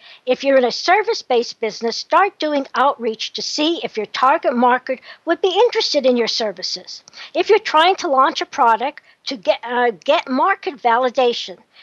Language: English